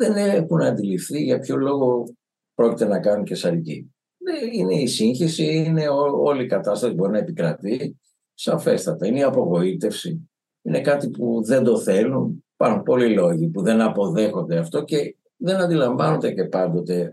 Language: Greek